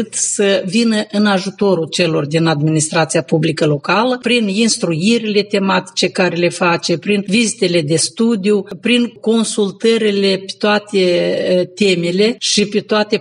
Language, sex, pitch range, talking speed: Romanian, female, 175-210 Hz, 125 wpm